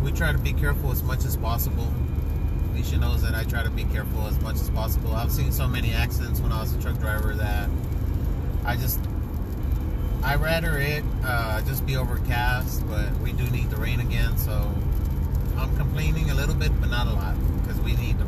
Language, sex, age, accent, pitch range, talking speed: English, male, 30-49, American, 65-70 Hz, 205 wpm